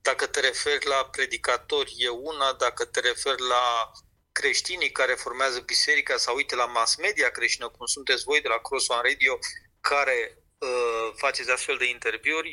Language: Romanian